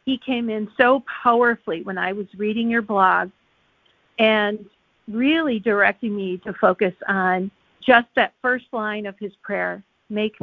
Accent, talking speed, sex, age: American, 150 wpm, female, 50-69